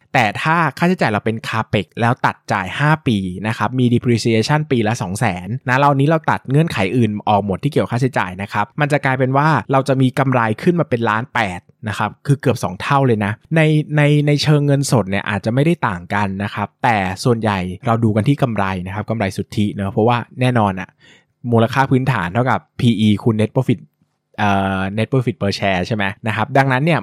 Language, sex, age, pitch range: Thai, male, 20-39, 105-135 Hz